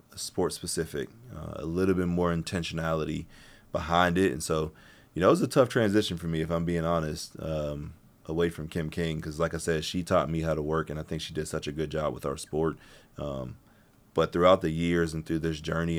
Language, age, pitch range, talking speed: English, 30-49, 80-90 Hz, 230 wpm